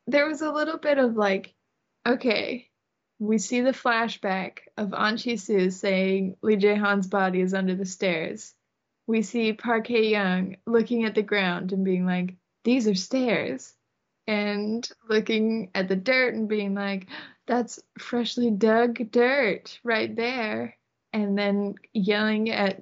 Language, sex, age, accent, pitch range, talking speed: English, female, 20-39, American, 200-235 Hz, 145 wpm